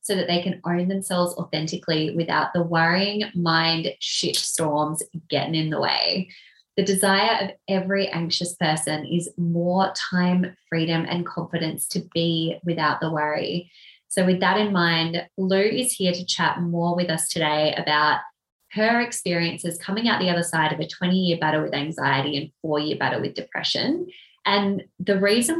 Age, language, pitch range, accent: 20-39, English, 160-195 Hz, Australian